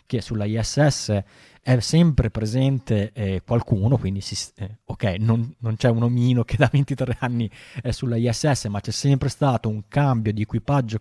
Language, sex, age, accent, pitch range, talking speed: Italian, male, 20-39, native, 105-130 Hz, 170 wpm